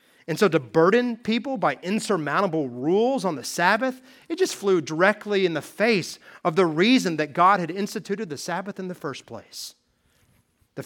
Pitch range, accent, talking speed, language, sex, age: 130-180 Hz, American, 175 wpm, English, male, 30-49